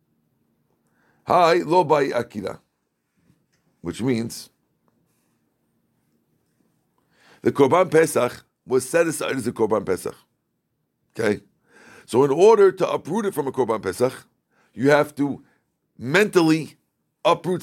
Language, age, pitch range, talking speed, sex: English, 50-69, 130-175 Hz, 95 wpm, male